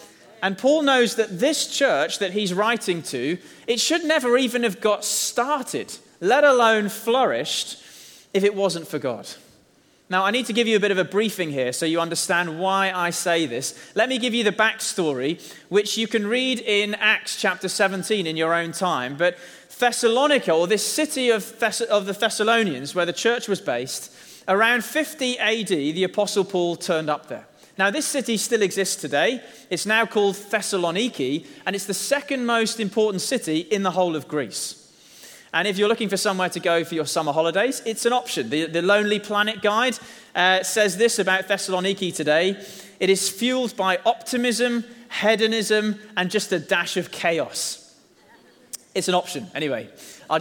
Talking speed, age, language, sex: 180 wpm, 30-49, English, male